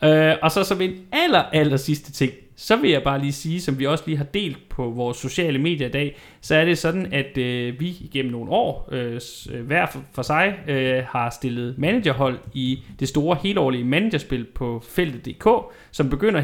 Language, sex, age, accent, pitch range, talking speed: Danish, male, 30-49, native, 125-160 Hz, 185 wpm